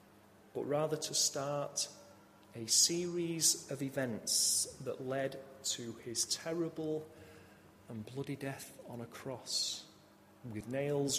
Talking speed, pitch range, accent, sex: 115 wpm, 110-155 Hz, British, male